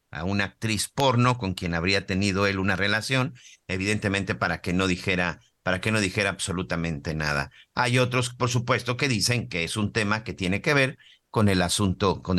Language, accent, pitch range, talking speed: Spanish, Mexican, 95-125 Hz, 195 wpm